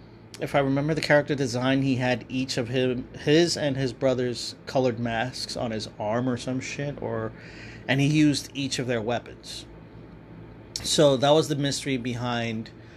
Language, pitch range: English, 110-135 Hz